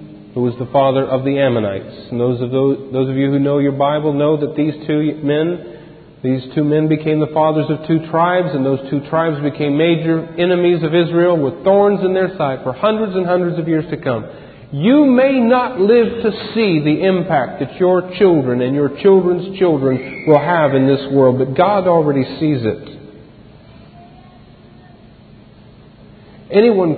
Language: English